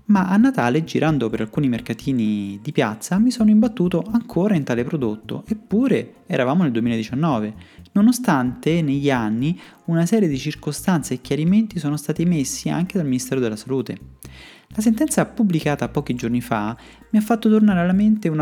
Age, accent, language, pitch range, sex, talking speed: 30-49, native, Italian, 120-180 Hz, male, 165 wpm